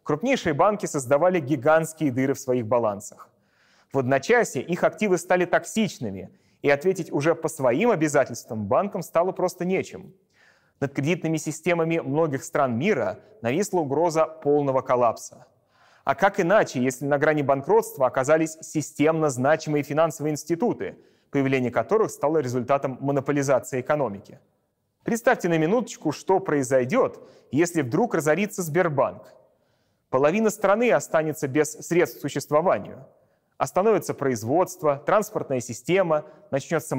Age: 30-49